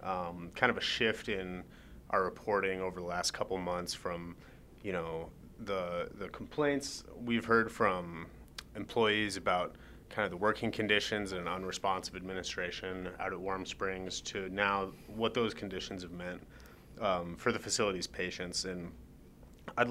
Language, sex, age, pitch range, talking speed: English, male, 30-49, 90-110 Hz, 150 wpm